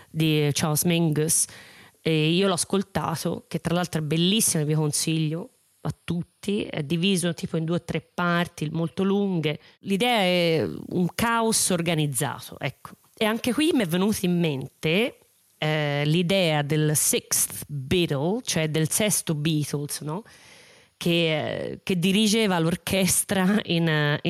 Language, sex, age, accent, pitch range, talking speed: Italian, female, 30-49, native, 160-190 Hz, 140 wpm